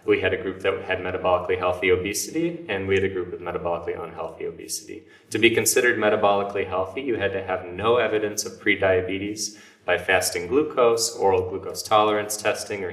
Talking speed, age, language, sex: 180 wpm, 30-49, English, male